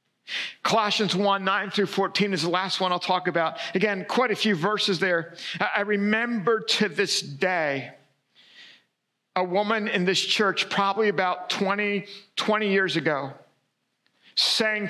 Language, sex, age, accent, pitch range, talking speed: English, male, 50-69, American, 180-215 Hz, 140 wpm